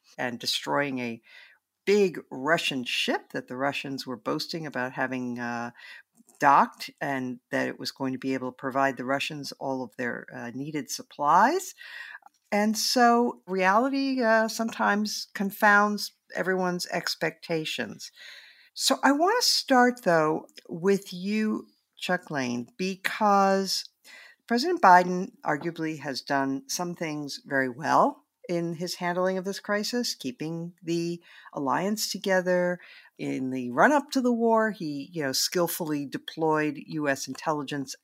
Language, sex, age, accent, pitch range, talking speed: English, female, 50-69, American, 140-205 Hz, 130 wpm